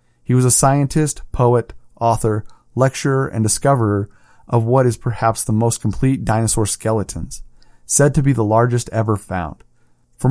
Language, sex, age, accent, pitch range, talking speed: English, male, 30-49, American, 105-125 Hz, 150 wpm